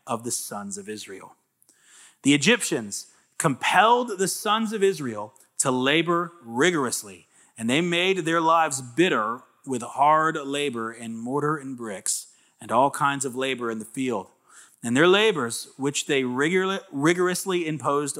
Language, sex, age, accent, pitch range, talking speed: English, male, 30-49, American, 145-220 Hz, 140 wpm